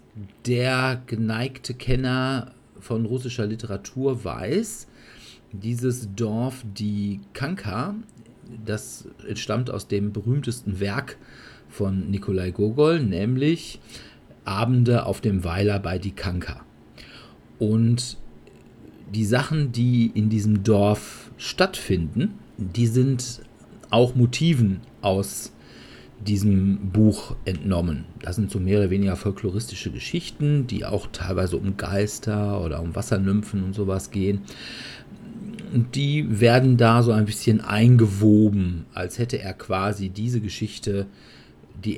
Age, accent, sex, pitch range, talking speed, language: 50-69, German, male, 95-120 Hz, 110 wpm, German